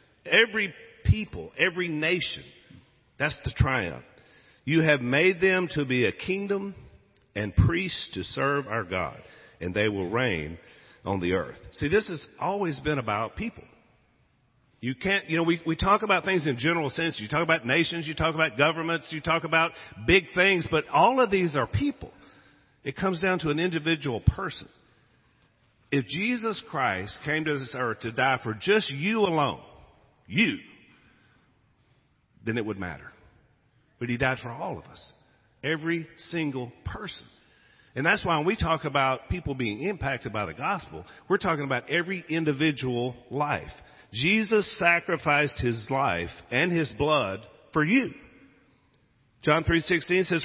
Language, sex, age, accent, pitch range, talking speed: English, male, 50-69, American, 125-175 Hz, 155 wpm